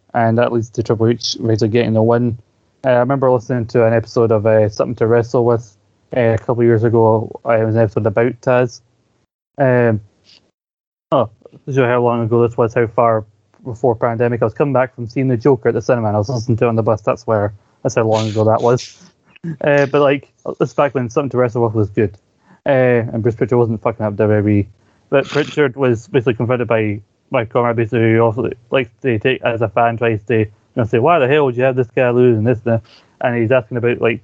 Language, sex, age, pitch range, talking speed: English, male, 20-39, 110-125 Hz, 235 wpm